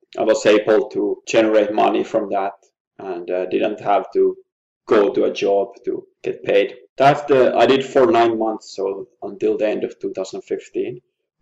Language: English